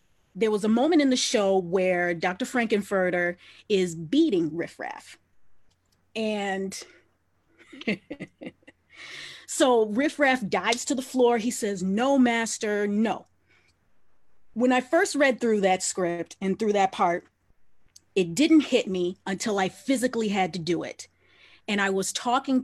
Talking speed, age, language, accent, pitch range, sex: 140 wpm, 30-49, English, American, 185-250 Hz, female